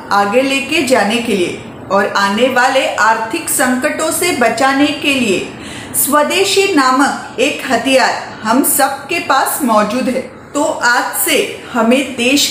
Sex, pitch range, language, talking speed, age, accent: female, 235-300 Hz, Marathi, 135 wpm, 40-59, native